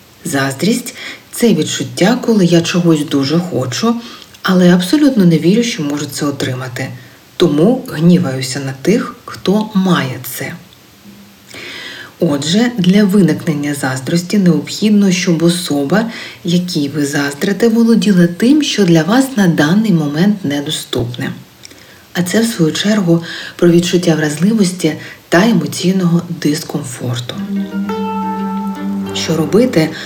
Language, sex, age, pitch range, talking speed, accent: Ukrainian, female, 40-59, 145-200 Hz, 110 wpm, native